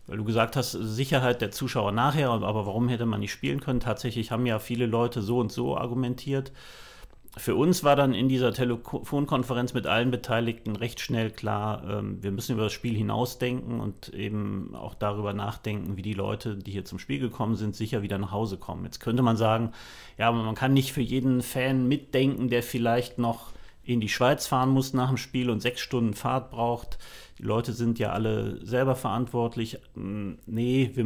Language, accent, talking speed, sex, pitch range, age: German, German, 190 wpm, male, 105-125 Hz, 40-59